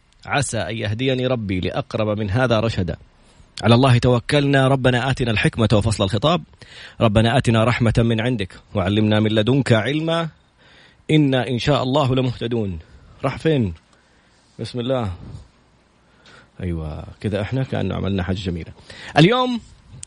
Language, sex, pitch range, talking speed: Arabic, male, 110-155 Hz, 125 wpm